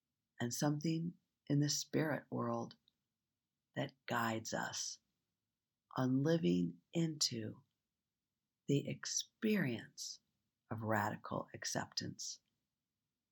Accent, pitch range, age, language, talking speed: American, 115-165 Hz, 50-69, English, 75 wpm